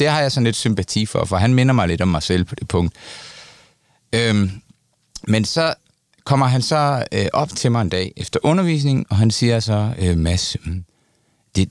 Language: Danish